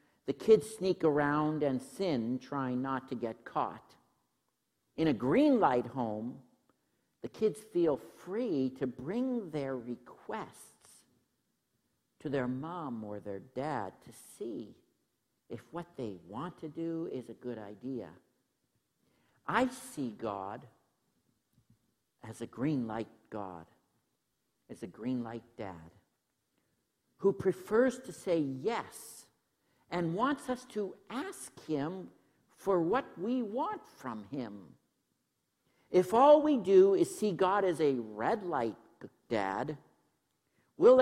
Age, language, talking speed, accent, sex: 60-79, English, 125 wpm, American, male